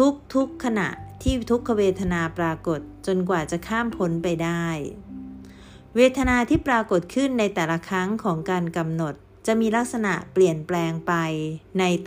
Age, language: 30-49, Thai